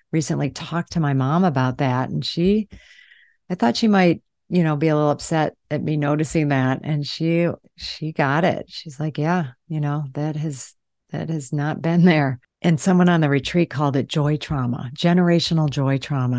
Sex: female